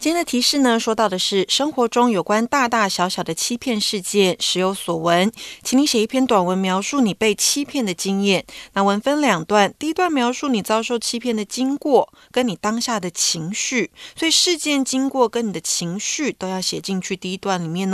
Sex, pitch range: female, 190-275 Hz